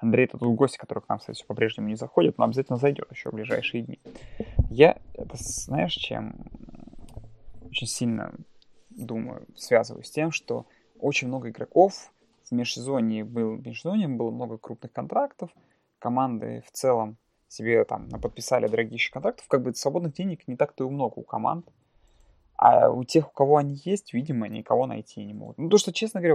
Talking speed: 175 wpm